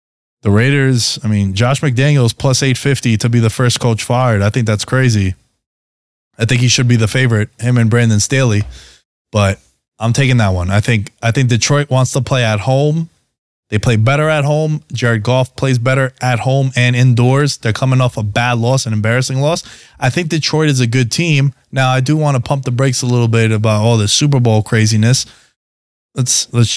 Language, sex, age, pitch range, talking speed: English, male, 20-39, 105-130 Hz, 205 wpm